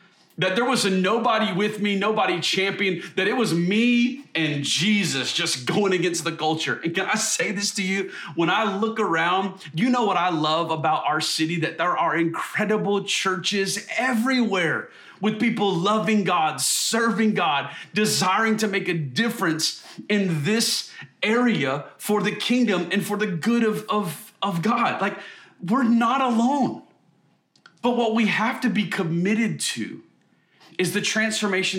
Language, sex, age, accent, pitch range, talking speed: English, male, 30-49, American, 160-215 Hz, 160 wpm